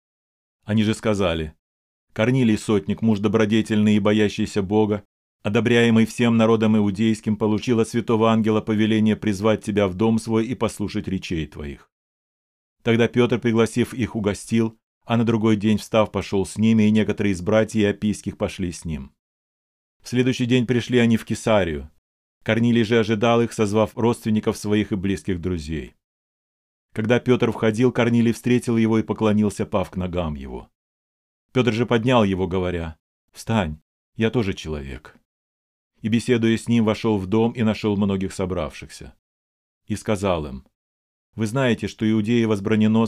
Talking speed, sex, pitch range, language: 150 wpm, male, 95-115 Hz, Russian